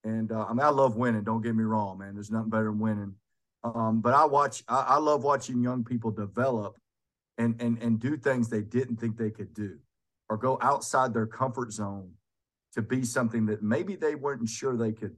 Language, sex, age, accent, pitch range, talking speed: English, male, 40-59, American, 105-120 Hz, 220 wpm